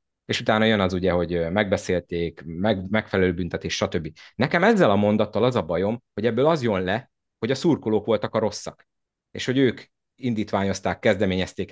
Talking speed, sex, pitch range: 175 wpm, male, 90-110 Hz